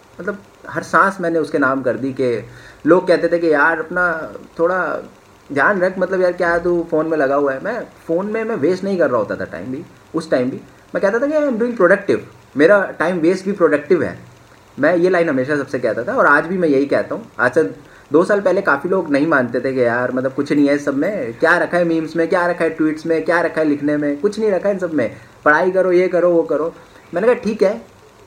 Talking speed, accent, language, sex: 250 wpm, native, Hindi, male